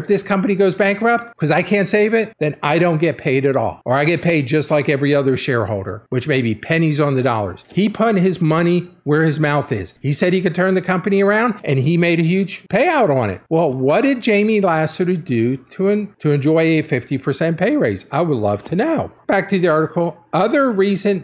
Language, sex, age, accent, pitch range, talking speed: English, male, 50-69, American, 135-180 Hz, 230 wpm